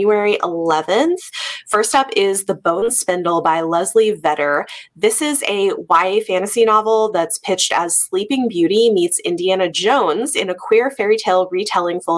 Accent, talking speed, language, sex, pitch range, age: American, 160 wpm, English, female, 170-260 Hz, 20-39